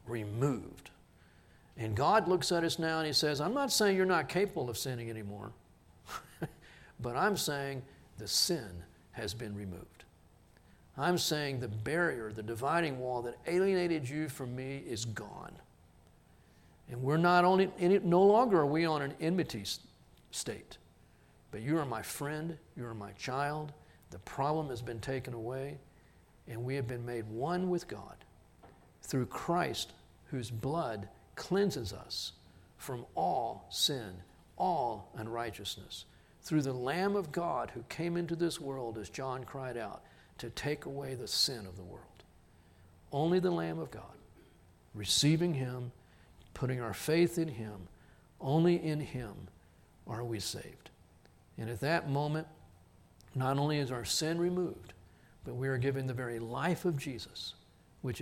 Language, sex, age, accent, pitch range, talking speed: English, male, 50-69, American, 100-155 Hz, 150 wpm